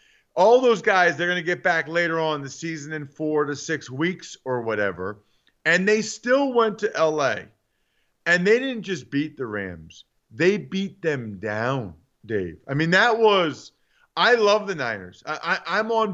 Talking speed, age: 175 wpm, 40-59